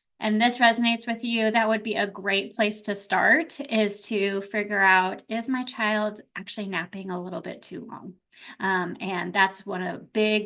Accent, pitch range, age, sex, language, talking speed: American, 195-250 Hz, 20-39, female, English, 190 wpm